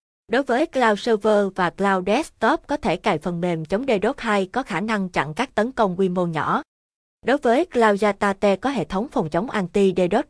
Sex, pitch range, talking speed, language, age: female, 185-230 Hz, 205 wpm, Vietnamese, 20-39